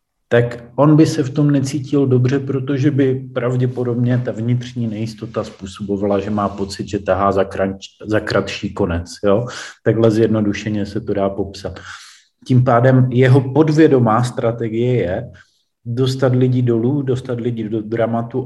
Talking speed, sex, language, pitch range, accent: 140 wpm, male, Czech, 110-125 Hz, native